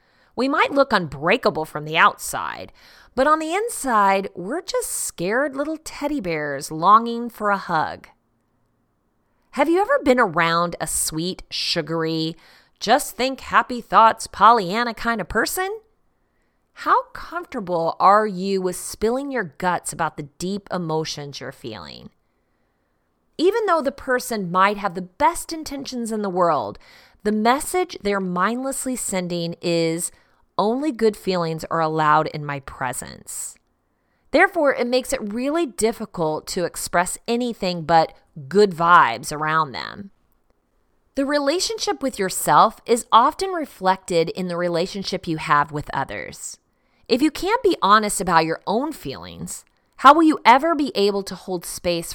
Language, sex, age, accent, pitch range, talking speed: English, female, 30-49, American, 170-260 Hz, 135 wpm